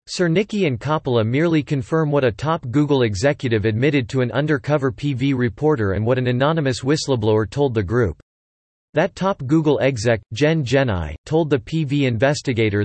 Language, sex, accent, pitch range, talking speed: English, male, American, 120-150 Hz, 165 wpm